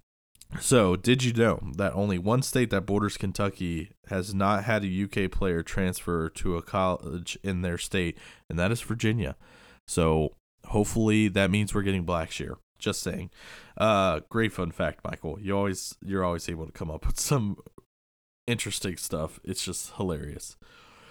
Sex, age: male, 20-39